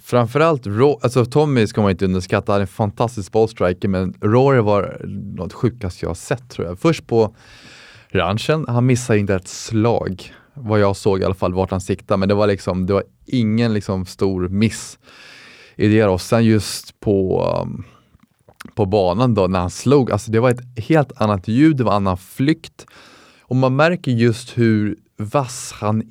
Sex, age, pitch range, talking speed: male, 20-39, 105-130 Hz, 185 wpm